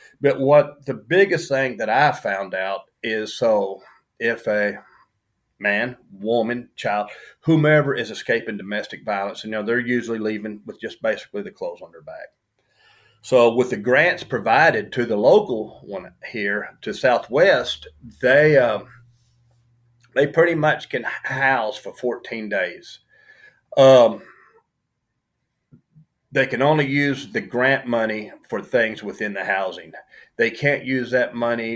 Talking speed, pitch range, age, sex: 140 wpm, 115-150 Hz, 40-59, male